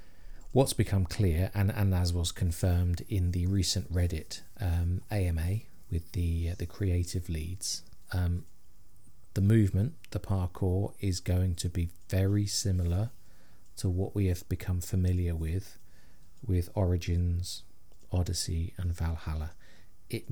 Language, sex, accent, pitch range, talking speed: English, male, British, 90-105 Hz, 130 wpm